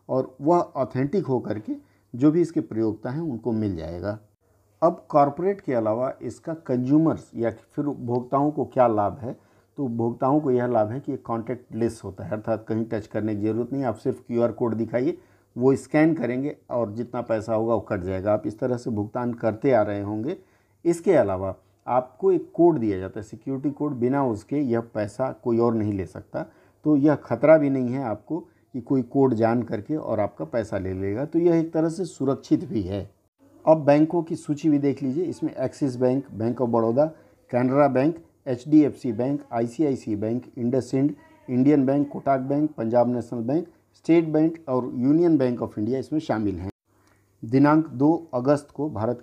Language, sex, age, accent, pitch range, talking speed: Hindi, male, 50-69, native, 110-145 Hz, 190 wpm